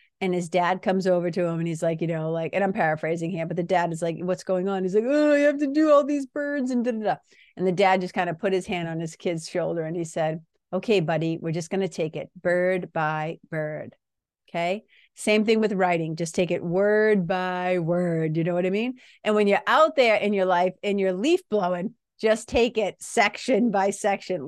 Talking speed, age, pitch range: 245 wpm, 40-59, 175-250 Hz